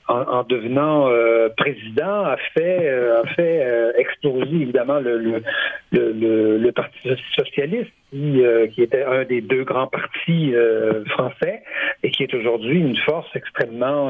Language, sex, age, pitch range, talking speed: French, male, 60-79, 130-190 Hz, 160 wpm